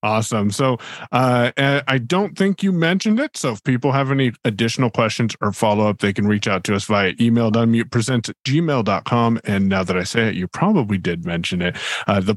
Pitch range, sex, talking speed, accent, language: 110-150 Hz, male, 200 wpm, American, English